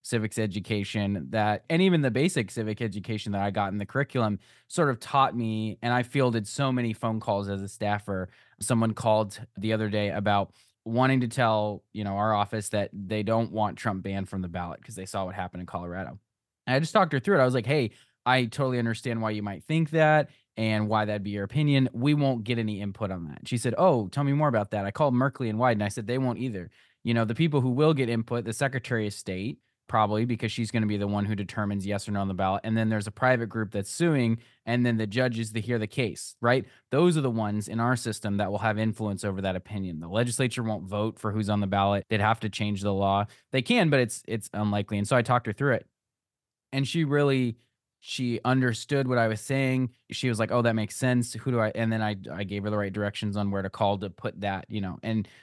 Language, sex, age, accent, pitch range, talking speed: English, male, 20-39, American, 105-125 Hz, 255 wpm